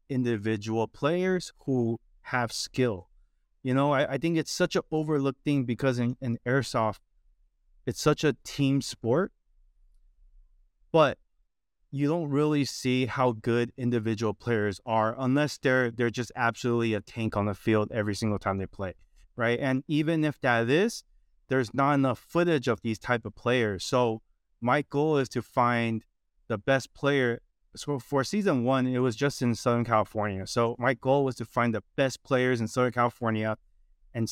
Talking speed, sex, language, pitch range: 170 wpm, male, English, 110-135 Hz